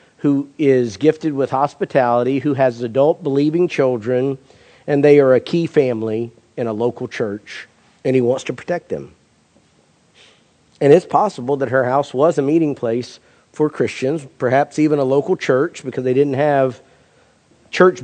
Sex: male